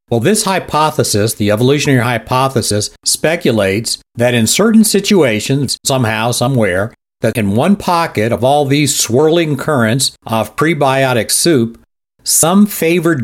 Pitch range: 110-145 Hz